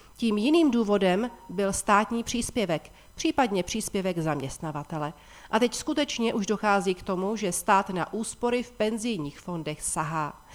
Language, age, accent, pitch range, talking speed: Czech, 40-59, native, 175-230 Hz, 135 wpm